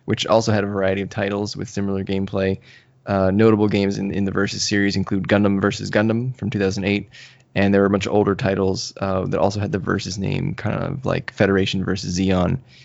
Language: English